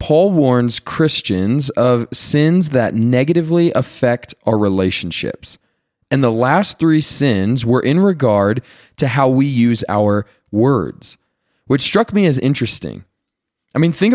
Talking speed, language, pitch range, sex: 135 wpm, English, 115-155 Hz, male